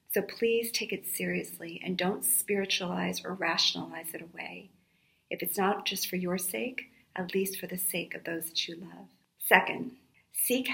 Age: 40-59